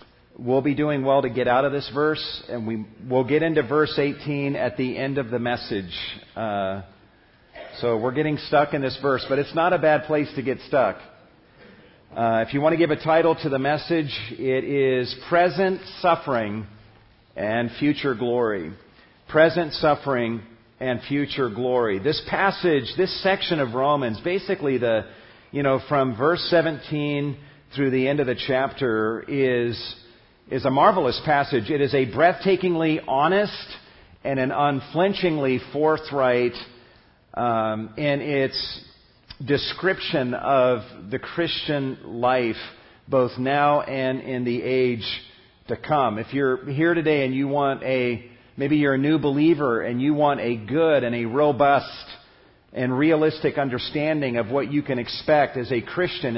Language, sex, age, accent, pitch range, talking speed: English, male, 40-59, American, 120-150 Hz, 155 wpm